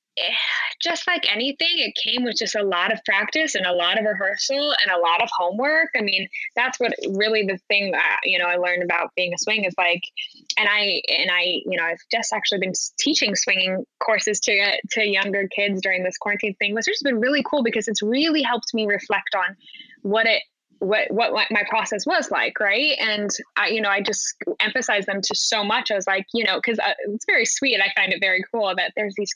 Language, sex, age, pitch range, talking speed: English, female, 10-29, 205-260 Hz, 225 wpm